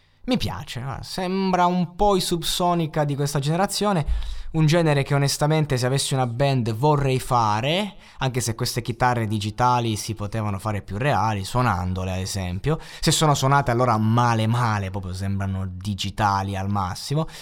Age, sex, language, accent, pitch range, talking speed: 20-39, male, Italian, native, 105-140 Hz, 150 wpm